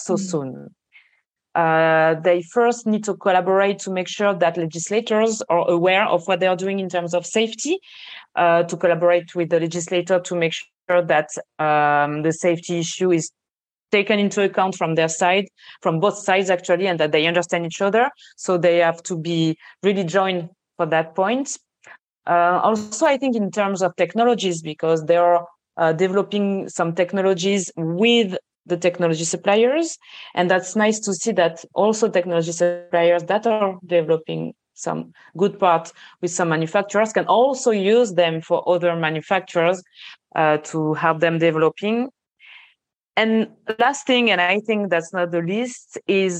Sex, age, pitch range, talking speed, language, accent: female, 20-39, 170-210 Hz, 160 wpm, English, French